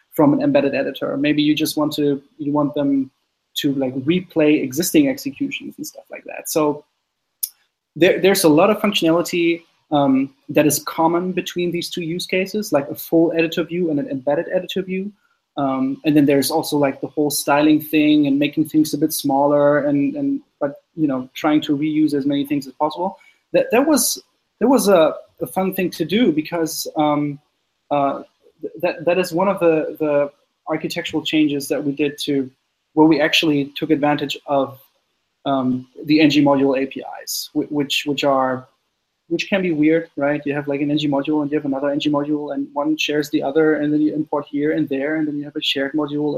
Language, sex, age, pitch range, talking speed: English, male, 20-39, 145-175 Hz, 200 wpm